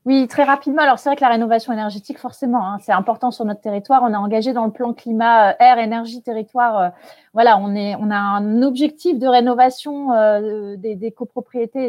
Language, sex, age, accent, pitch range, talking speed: French, female, 30-49, French, 210-265 Hz, 200 wpm